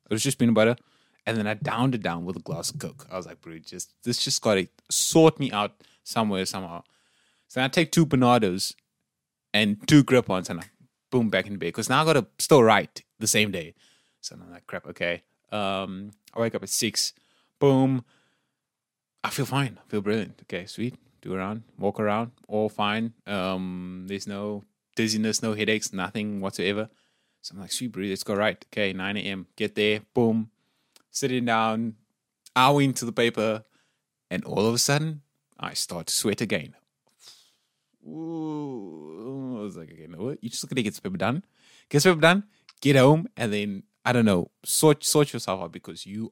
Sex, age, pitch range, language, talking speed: male, 20-39, 100-130 Hz, English, 195 wpm